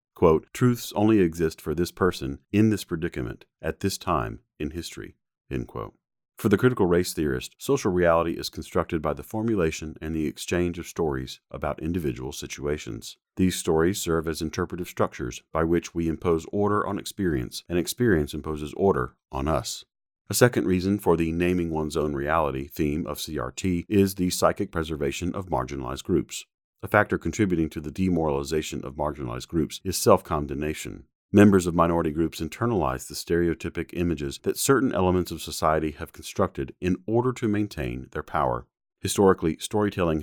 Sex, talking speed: male, 160 wpm